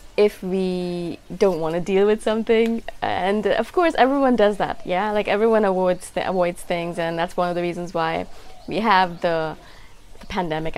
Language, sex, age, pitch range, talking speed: English, female, 20-39, 175-215 Hz, 185 wpm